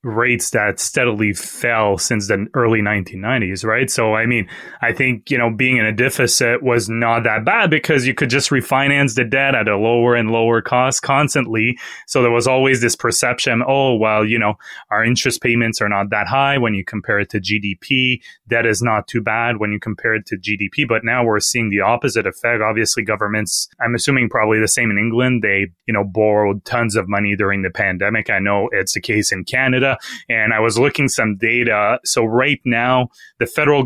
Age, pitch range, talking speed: 20-39, 105-125 Hz, 205 wpm